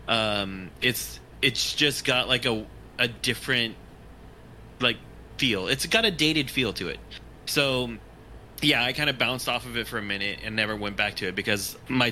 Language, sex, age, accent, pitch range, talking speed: English, male, 20-39, American, 110-135 Hz, 190 wpm